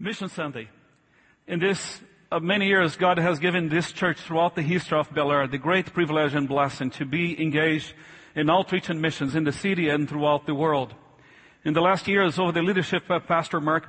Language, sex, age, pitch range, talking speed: English, male, 40-59, 150-175 Hz, 200 wpm